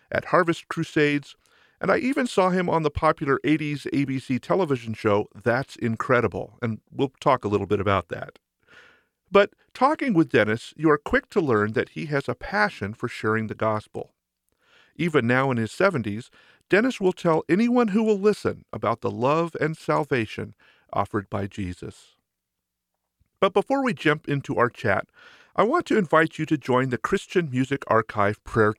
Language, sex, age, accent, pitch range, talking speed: English, male, 50-69, American, 110-170 Hz, 170 wpm